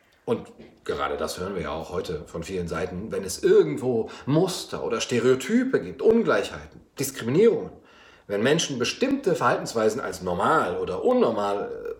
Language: German